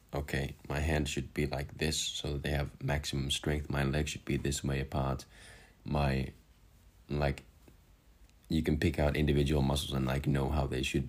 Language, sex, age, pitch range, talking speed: English, male, 20-39, 70-80 Hz, 185 wpm